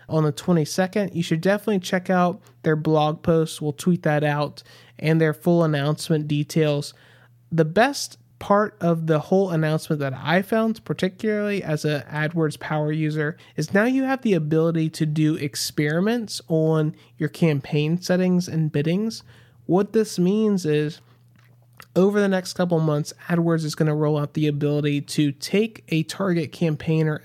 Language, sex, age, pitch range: English, male, 30-49, 150-175 Hz